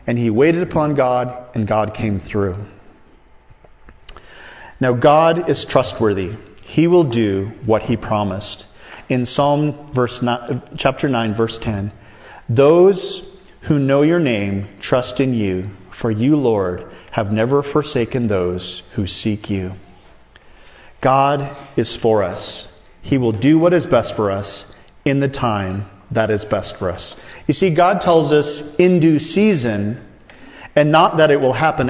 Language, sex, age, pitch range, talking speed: English, male, 40-59, 105-155 Hz, 150 wpm